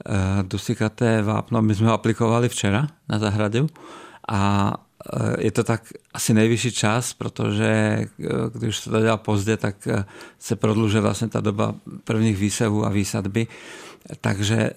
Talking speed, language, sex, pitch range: 135 wpm, Czech, male, 105-115 Hz